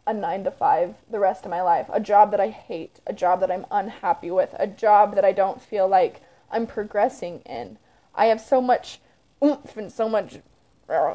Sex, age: female, 20-39